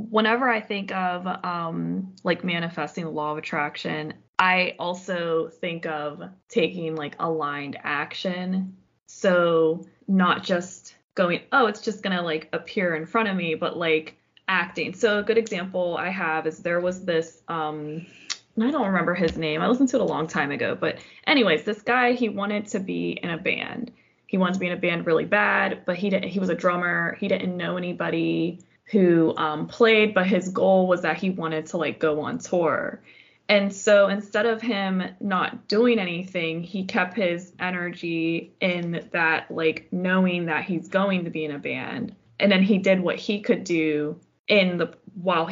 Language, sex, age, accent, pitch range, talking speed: English, female, 20-39, American, 165-200 Hz, 185 wpm